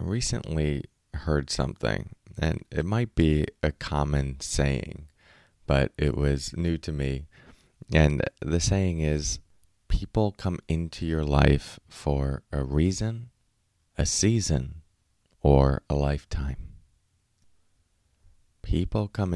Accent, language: American, English